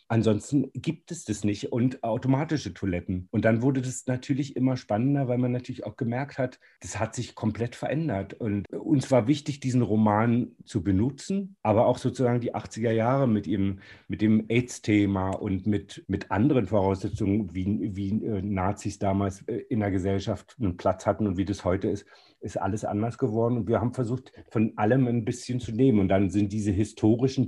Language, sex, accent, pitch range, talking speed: German, male, German, 100-125 Hz, 185 wpm